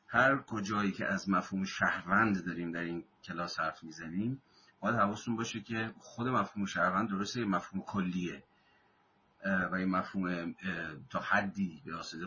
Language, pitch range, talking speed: Persian, 90-105 Hz, 145 wpm